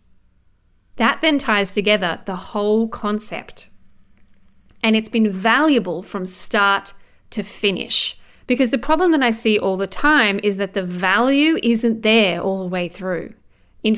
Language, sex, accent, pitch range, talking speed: English, female, Australian, 190-235 Hz, 150 wpm